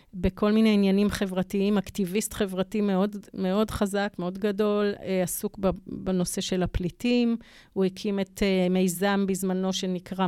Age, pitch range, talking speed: 30-49, 195-250 Hz, 125 wpm